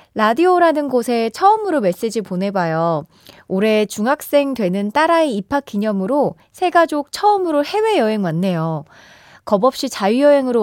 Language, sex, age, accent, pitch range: Korean, female, 20-39, native, 190-305 Hz